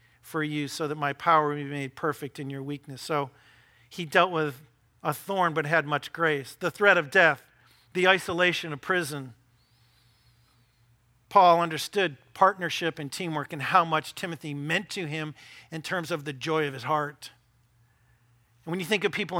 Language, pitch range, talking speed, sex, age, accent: English, 140-185 Hz, 175 wpm, male, 50-69, American